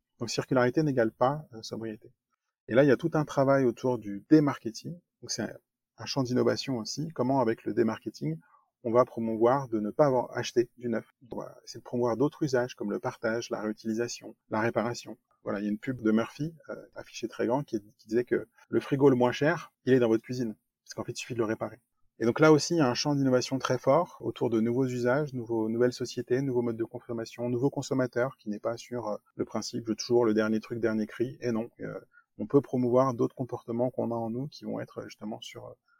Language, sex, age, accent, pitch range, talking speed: French, male, 30-49, French, 115-135 Hz, 235 wpm